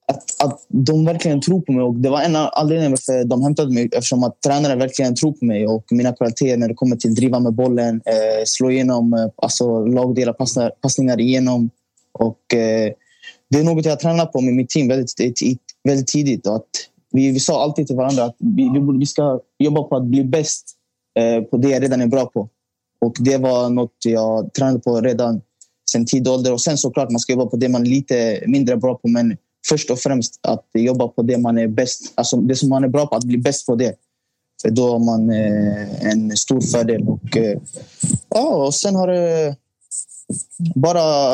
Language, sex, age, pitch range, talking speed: Swedish, male, 20-39, 120-145 Hz, 205 wpm